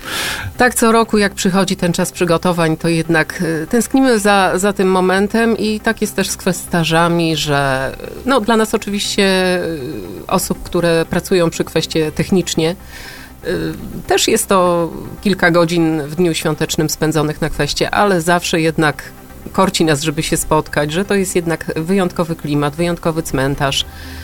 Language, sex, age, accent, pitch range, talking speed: Polish, female, 30-49, native, 150-190 Hz, 145 wpm